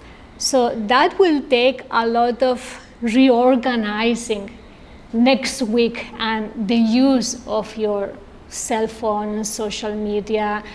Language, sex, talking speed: English, female, 105 wpm